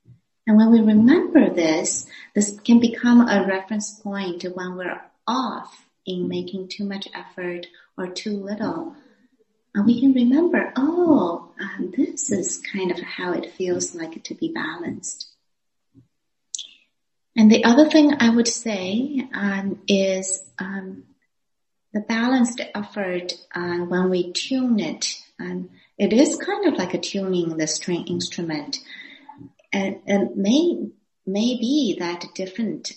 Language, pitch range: English, 175-240 Hz